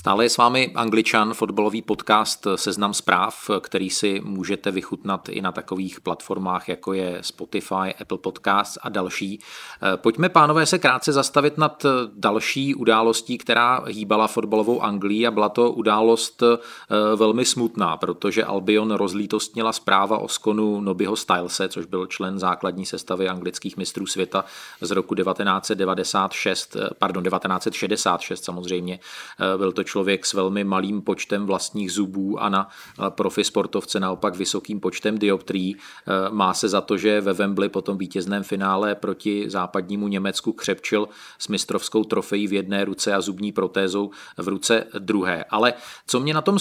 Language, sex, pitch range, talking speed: Czech, male, 95-110 Hz, 145 wpm